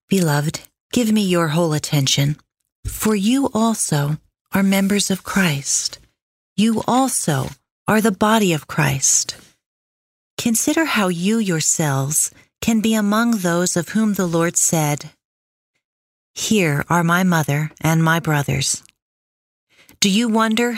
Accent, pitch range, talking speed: American, 155-220 Hz, 125 wpm